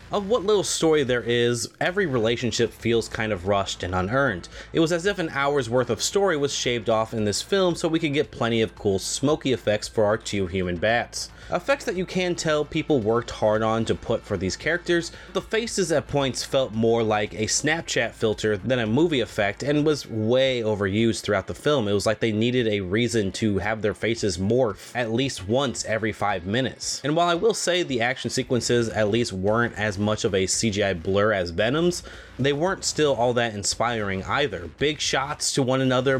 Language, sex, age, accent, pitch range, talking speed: English, male, 20-39, American, 105-140 Hz, 210 wpm